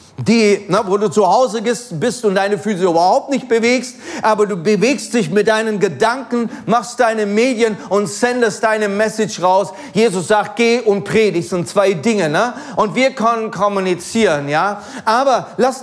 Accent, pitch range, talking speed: German, 160-220 Hz, 170 wpm